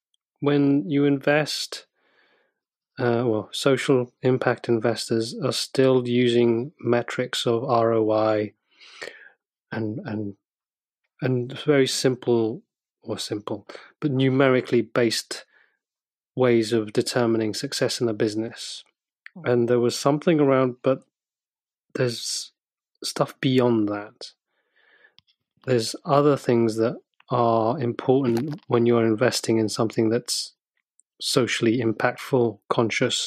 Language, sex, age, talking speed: English, male, 30-49, 100 wpm